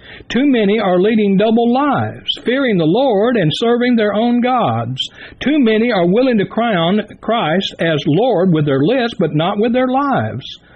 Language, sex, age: English, male, 60-79